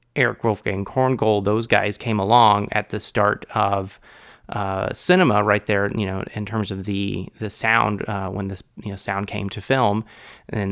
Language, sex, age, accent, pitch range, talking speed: English, male, 30-49, American, 100-110 Hz, 185 wpm